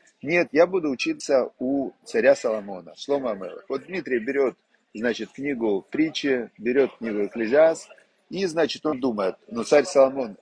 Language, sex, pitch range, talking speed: Russian, male, 120-200 Hz, 150 wpm